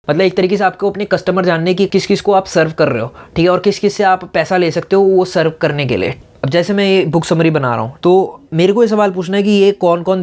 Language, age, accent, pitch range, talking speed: Hindi, 20-39, native, 155-185 Hz, 310 wpm